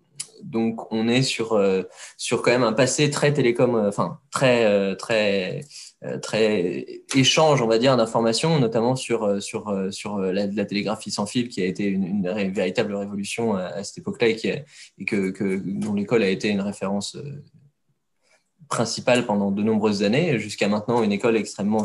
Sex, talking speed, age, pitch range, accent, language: male, 170 wpm, 20-39, 100-135 Hz, French, French